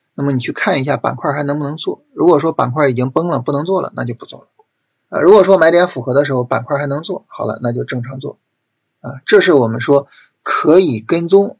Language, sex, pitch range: Chinese, male, 135-180 Hz